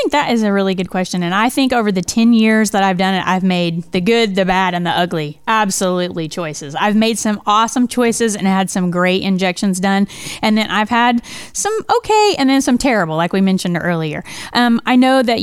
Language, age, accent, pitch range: English, 30-49, American, 185-225 Hz